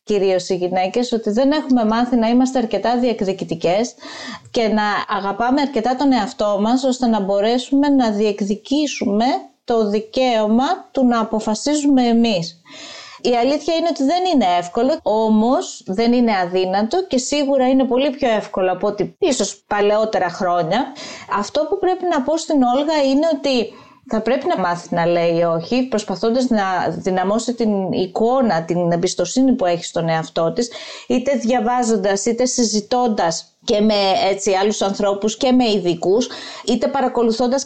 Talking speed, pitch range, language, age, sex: 150 wpm, 200-265 Hz, Greek, 30-49, female